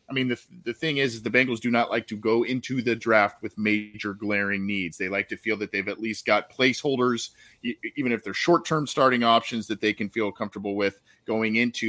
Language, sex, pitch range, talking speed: English, male, 100-125 Hz, 225 wpm